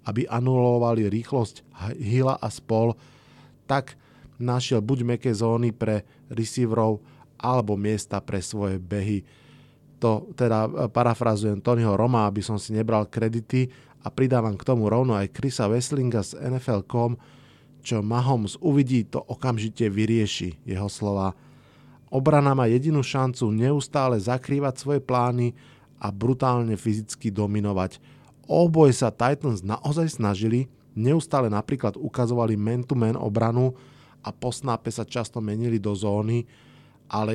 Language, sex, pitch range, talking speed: Slovak, male, 105-130 Hz, 125 wpm